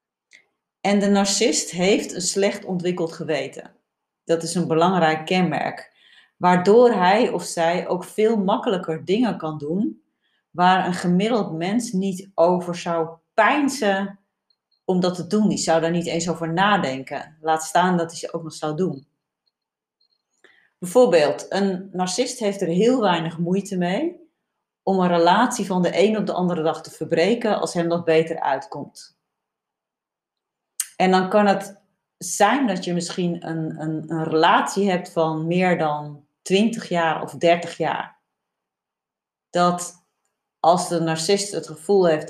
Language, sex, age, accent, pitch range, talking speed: Dutch, female, 40-59, Dutch, 160-195 Hz, 150 wpm